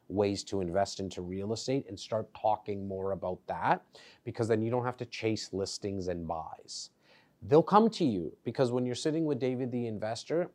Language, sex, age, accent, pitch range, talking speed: English, male, 30-49, American, 110-135 Hz, 195 wpm